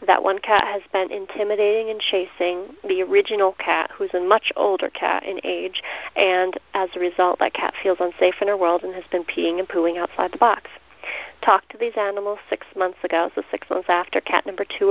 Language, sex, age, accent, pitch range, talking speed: English, female, 40-59, American, 185-275 Hz, 210 wpm